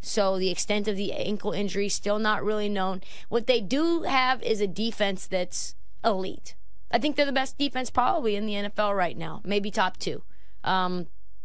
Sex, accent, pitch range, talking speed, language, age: female, American, 195-250 Hz, 190 wpm, English, 20-39